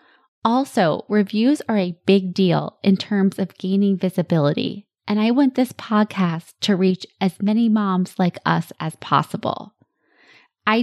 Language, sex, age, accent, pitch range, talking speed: English, female, 20-39, American, 180-225 Hz, 145 wpm